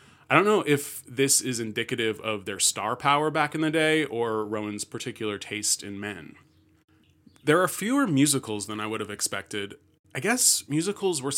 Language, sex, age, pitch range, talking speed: English, male, 30-49, 105-135 Hz, 180 wpm